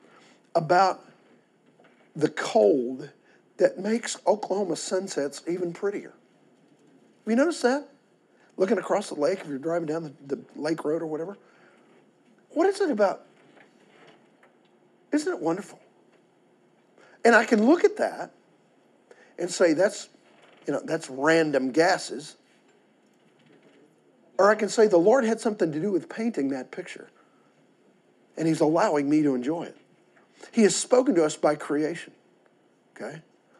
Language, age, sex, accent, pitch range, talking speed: English, 50-69, male, American, 155-220 Hz, 135 wpm